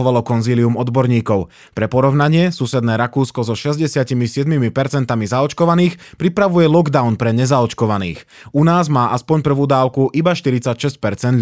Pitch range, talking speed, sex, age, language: 115-150 Hz, 110 wpm, male, 20-39, Slovak